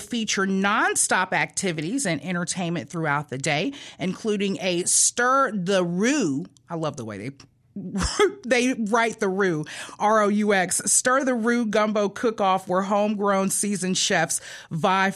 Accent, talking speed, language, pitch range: American, 130 wpm, English, 170-220 Hz